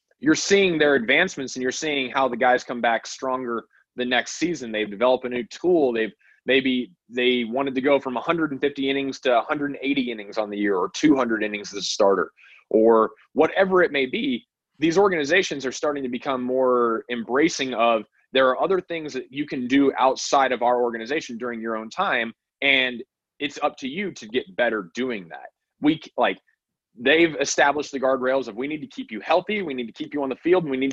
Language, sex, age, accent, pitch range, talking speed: English, male, 20-39, American, 120-150 Hz, 205 wpm